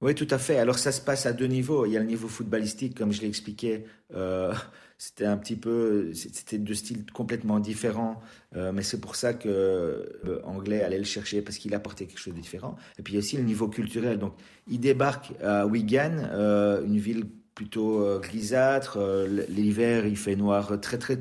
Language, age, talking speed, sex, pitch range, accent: French, 40-59, 205 wpm, male, 105-125 Hz, French